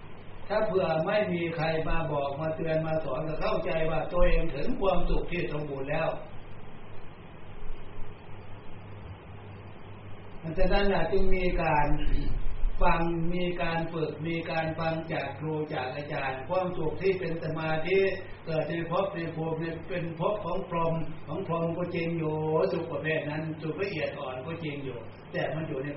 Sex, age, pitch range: male, 60-79, 125-165 Hz